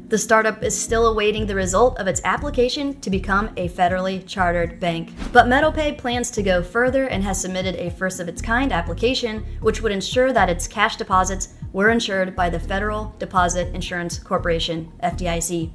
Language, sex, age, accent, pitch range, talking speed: English, female, 30-49, American, 185-235 Hz, 170 wpm